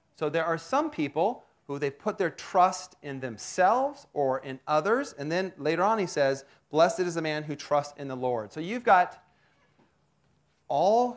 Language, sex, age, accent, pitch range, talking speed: English, male, 40-59, American, 135-180 Hz, 185 wpm